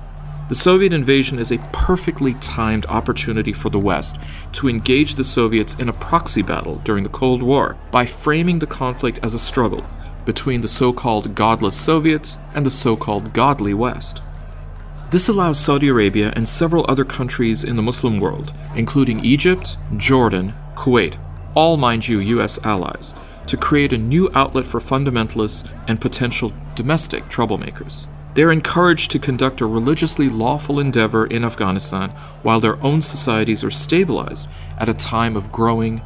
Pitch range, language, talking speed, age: 105-145 Hz, English, 155 wpm, 40-59